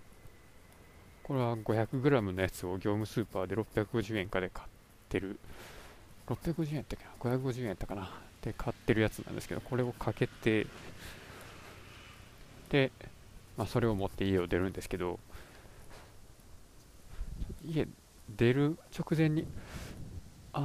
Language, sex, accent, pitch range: Japanese, male, native, 95-125 Hz